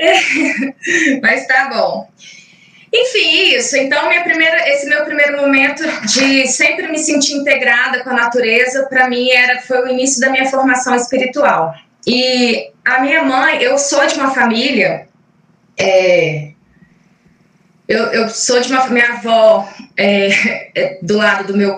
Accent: Brazilian